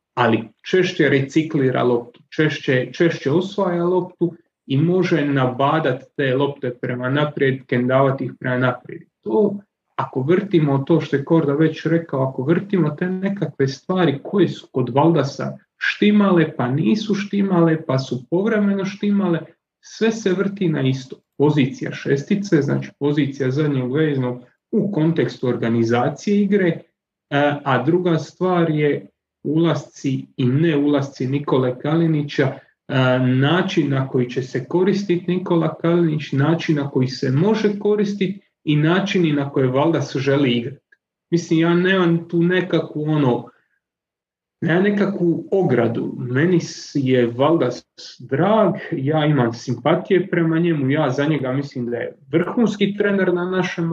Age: 30-49